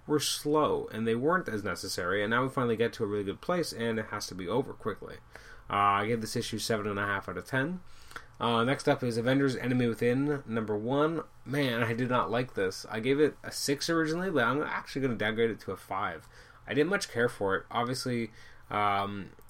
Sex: male